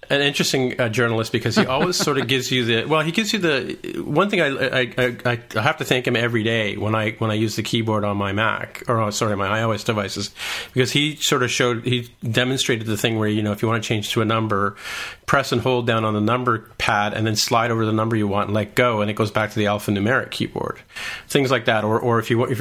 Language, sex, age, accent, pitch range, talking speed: English, male, 40-59, American, 105-125 Hz, 265 wpm